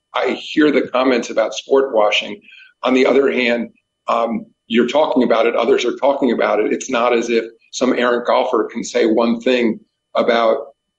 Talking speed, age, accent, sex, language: 180 wpm, 50-69, American, male, English